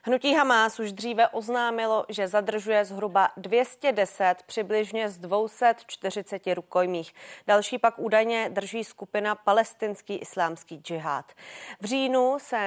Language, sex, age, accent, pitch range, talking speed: Czech, female, 30-49, native, 185-225 Hz, 115 wpm